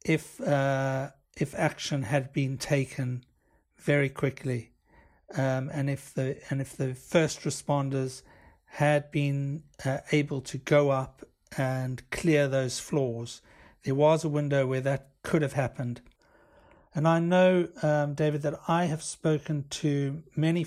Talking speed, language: 140 wpm, English